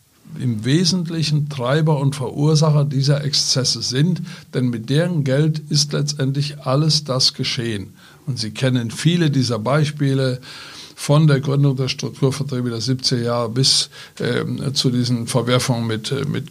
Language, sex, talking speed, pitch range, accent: German, male, 140 wpm, 130-150 Hz, German